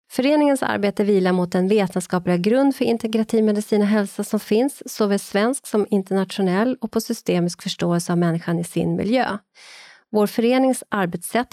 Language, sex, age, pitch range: Swedish, female, 30-49, 175-225 Hz